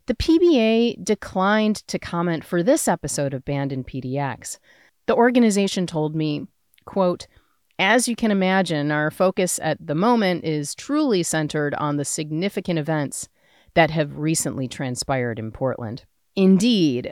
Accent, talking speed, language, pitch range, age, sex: American, 140 wpm, English, 145-205 Hz, 30-49, female